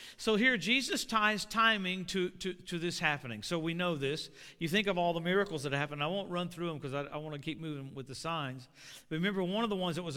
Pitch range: 170-225 Hz